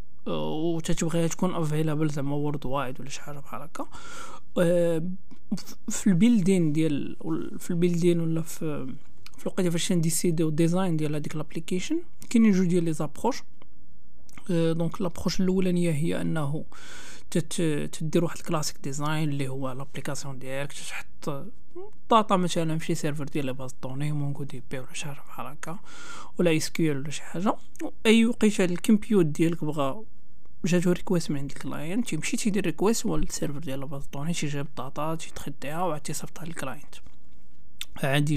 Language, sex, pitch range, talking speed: Arabic, male, 150-190 Hz, 70 wpm